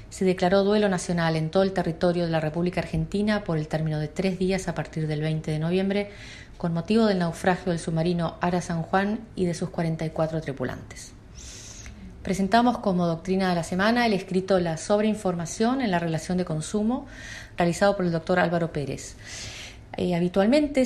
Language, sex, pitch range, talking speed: Spanish, female, 165-195 Hz, 175 wpm